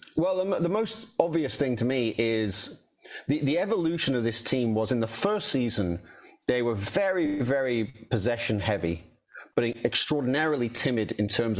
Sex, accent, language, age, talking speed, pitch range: male, British, English, 30-49, 155 wpm, 115-155 Hz